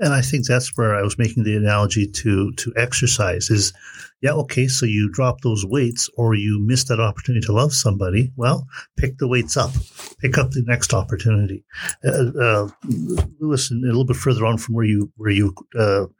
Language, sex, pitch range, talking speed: English, male, 110-135 Hz, 195 wpm